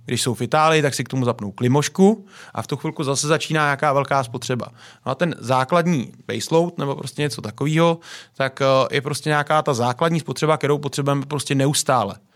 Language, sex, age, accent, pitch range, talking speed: Czech, male, 30-49, native, 125-150 Hz, 190 wpm